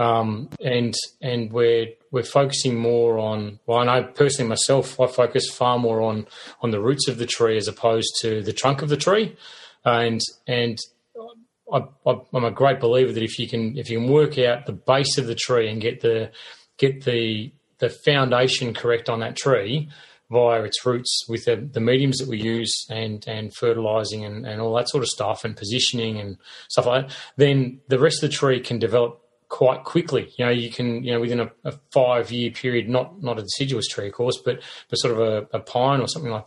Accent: Australian